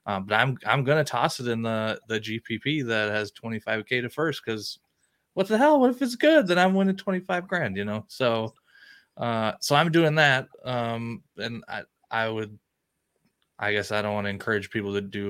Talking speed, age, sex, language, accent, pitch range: 205 wpm, 20-39, male, English, American, 100-120 Hz